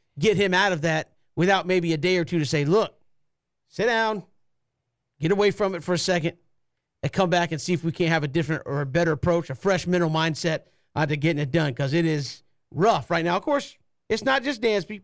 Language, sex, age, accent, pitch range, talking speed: English, male, 40-59, American, 160-235 Hz, 235 wpm